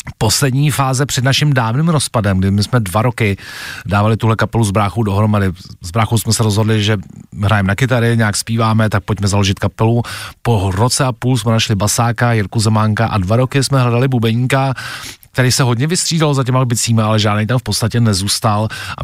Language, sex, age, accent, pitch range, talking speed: Czech, male, 40-59, native, 100-120 Hz, 190 wpm